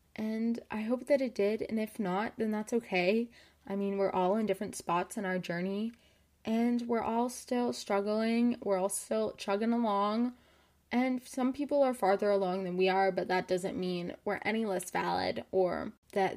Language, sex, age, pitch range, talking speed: English, female, 20-39, 200-260 Hz, 185 wpm